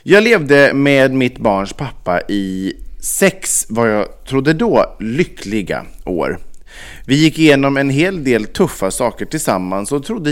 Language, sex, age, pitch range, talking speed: Swedish, male, 30-49, 105-175 Hz, 145 wpm